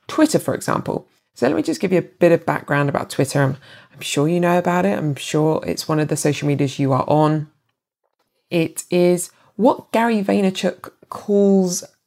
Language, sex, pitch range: English, female, 145-175 Hz